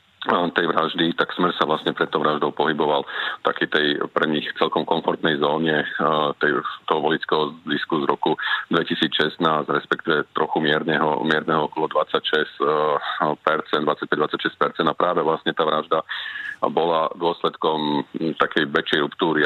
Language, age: Czech, 40-59